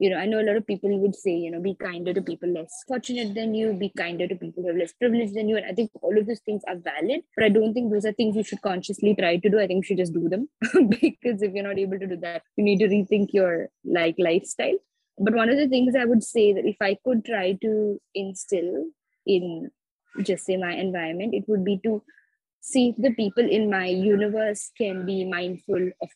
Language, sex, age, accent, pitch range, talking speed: English, female, 20-39, Indian, 185-225 Hz, 250 wpm